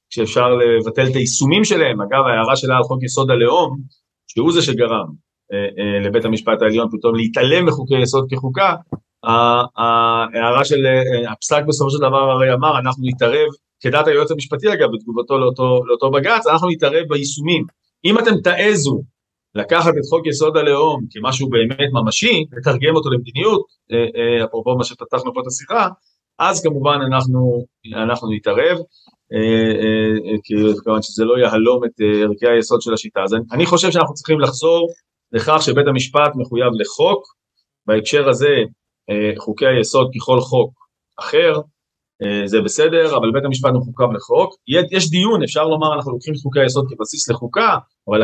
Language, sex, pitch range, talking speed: Hebrew, male, 115-155 Hz, 160 wpm